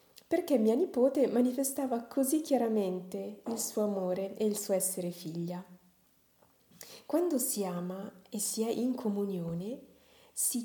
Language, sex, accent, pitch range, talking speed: Italian, female, native, 185-245 Hz, 130 wpm